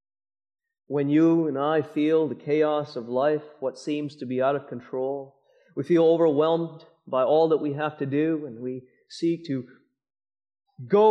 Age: 40-59